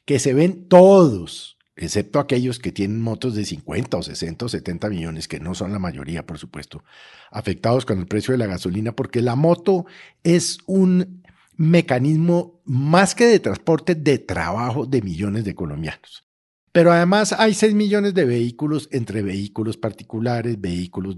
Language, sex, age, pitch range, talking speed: Spanish, male, 50-69, 105-150 Hz, 160 wpm